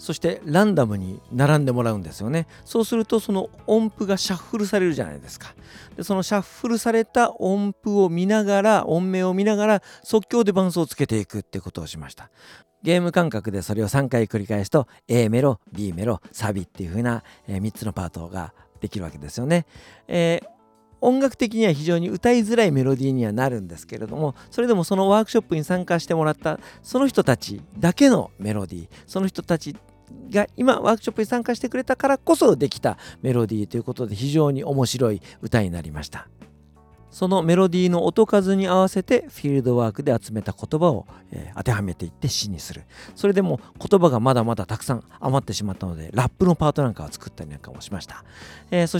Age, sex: 50-69, male